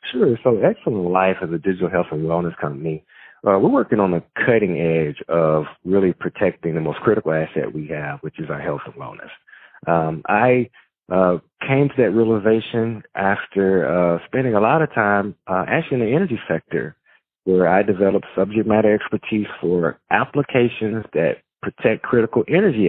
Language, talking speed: English, 170 wpm